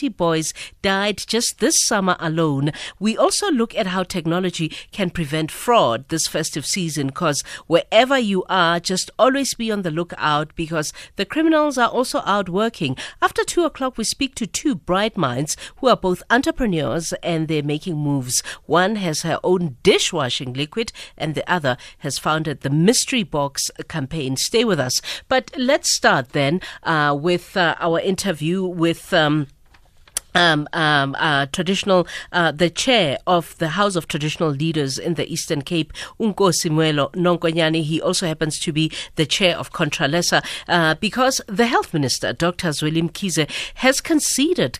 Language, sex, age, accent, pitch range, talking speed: English, female, 50-69, South African, 155-215 Hz, 160 wpm